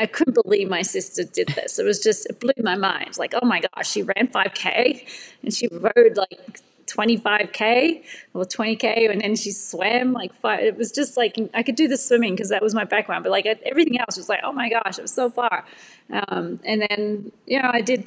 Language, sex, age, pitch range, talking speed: English, female, 30-49, 195-250 Hz, 225 wpm